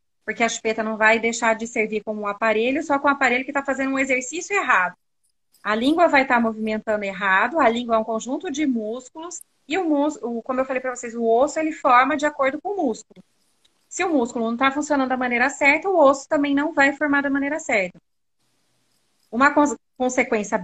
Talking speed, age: 200 wpm, 30-49